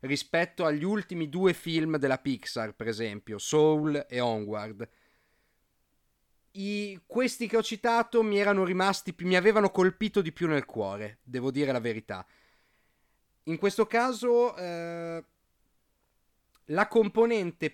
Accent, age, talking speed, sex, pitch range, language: native, 30-49, 125 wpm, male, 135-200 Hz, Italian